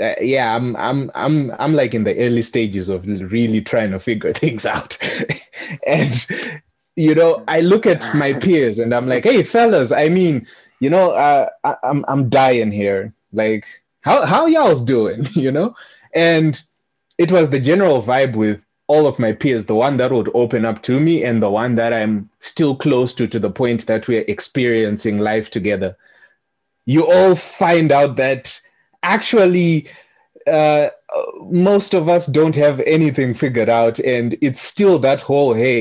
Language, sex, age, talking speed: English, male, 20-39, 175 wpm